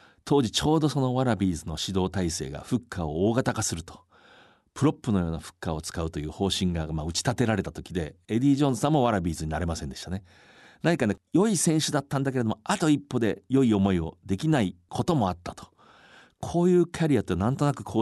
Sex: male